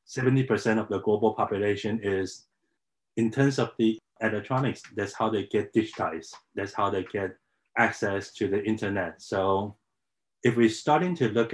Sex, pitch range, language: male, 100-115 Hz, English